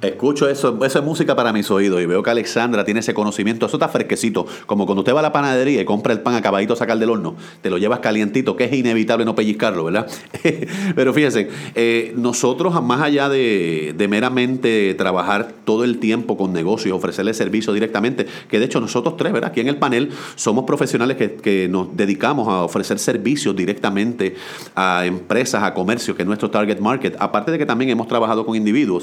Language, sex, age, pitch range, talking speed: Spanish, male, 30-49, 105-130 Hz, 205 wpm